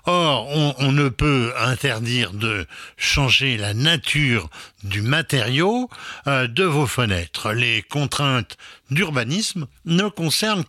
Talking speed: 120 wpm